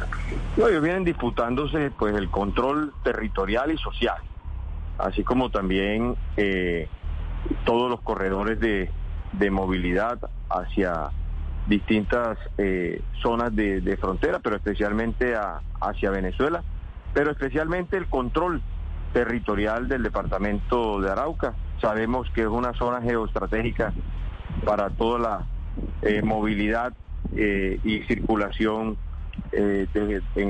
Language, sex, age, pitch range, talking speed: Spanish, male, 40-59, 95-120 Hz, 105 wpm